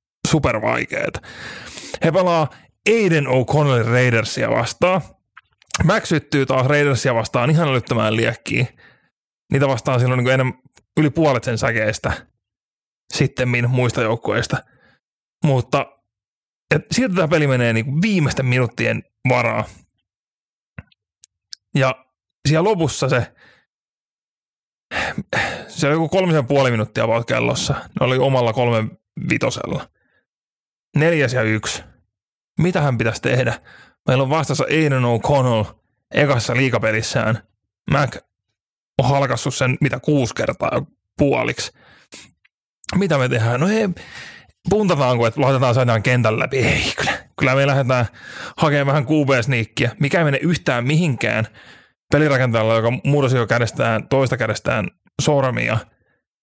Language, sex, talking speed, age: Finnish, male, 110 wpm, 30-49